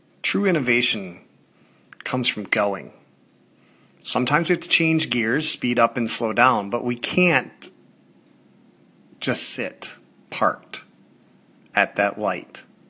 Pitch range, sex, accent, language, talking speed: 110-150 Hz, male, American, English, 115 wpm